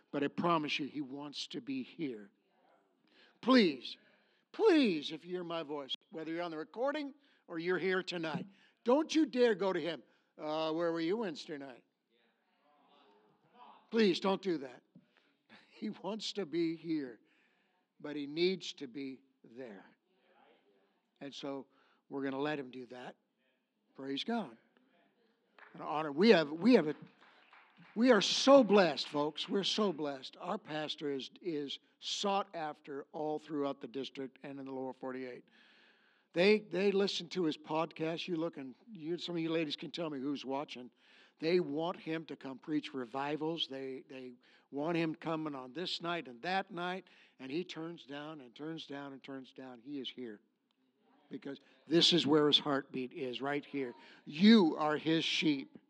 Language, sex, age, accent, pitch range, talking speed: English, male, 60-79, American, 140-185 Hz, 165 wpm